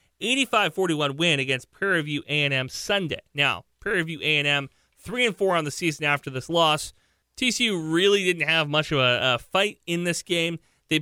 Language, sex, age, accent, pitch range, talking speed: English, male, 30-49, American, 140-180 Hz, 180 wpm